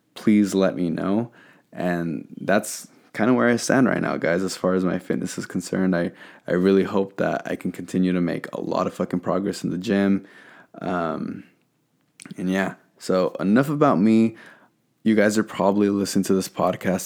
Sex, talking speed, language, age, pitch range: male, 190 wpm, English, 20-39, 90-100 Hz